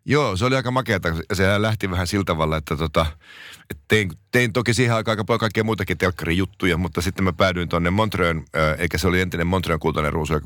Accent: native